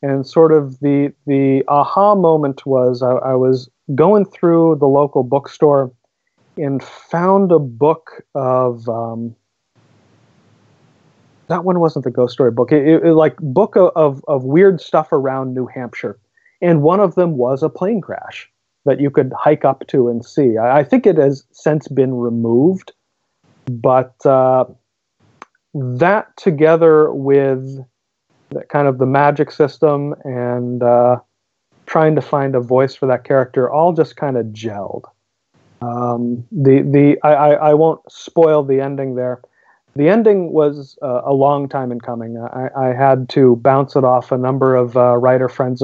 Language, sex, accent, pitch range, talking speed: English, male, American, 125-155 Hz, 160 wpm